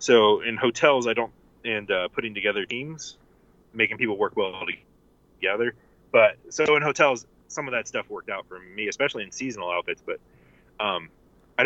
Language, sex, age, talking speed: English, male, 30-49, 175 wpm